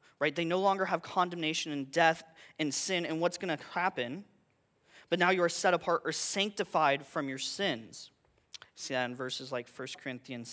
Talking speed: 185 wpm